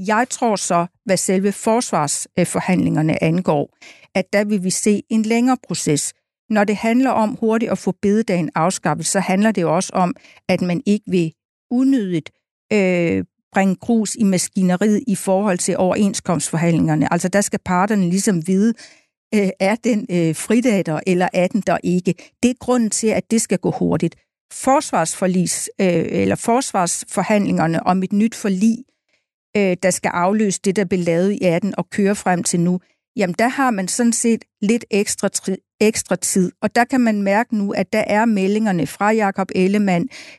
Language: Danish